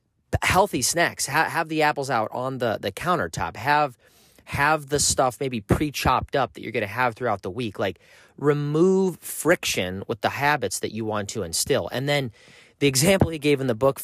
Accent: American